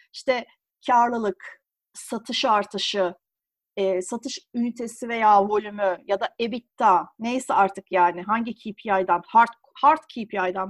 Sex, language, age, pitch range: female, Turkish, 40-59, 205-300 Hz